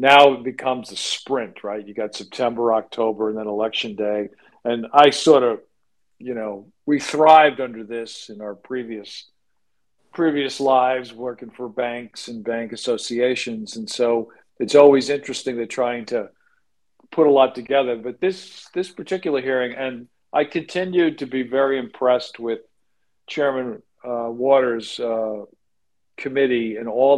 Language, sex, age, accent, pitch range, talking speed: English, male, 50-69, American, 115-135 Hz, 150 wpm